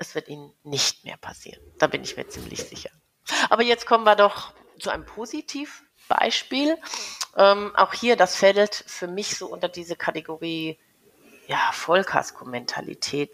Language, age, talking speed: German, 30-49, 145 wpm